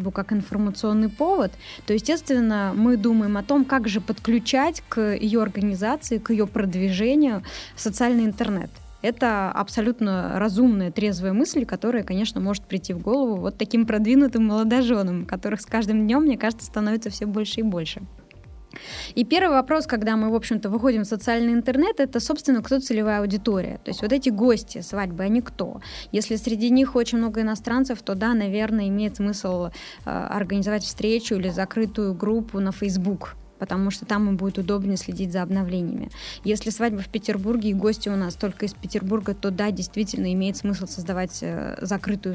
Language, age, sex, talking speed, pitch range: Russian, 10-29, female, 165 wpm, 195-230 Hz